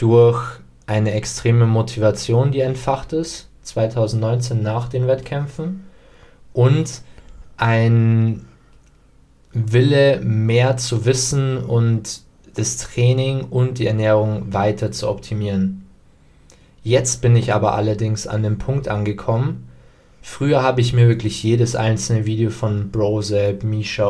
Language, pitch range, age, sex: German, 105-125 Hz, 20-39, male